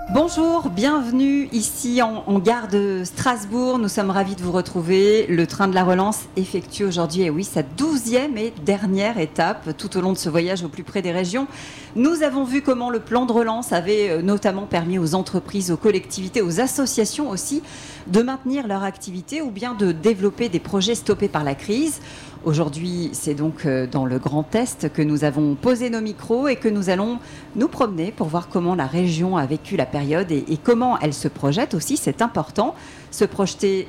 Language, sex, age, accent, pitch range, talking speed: French, female, 40-59, French, 165-230 Hz, 200 wpm